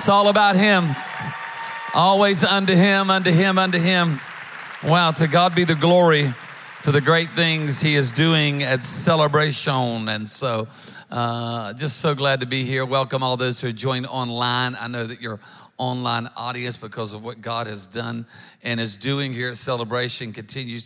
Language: English